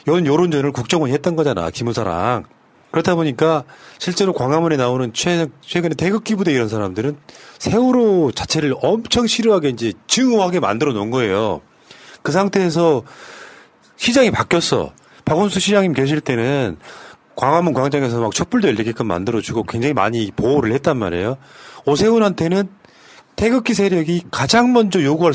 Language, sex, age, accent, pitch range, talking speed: English, male, 40-59, Korean, 130-200 Hz, 120 wpm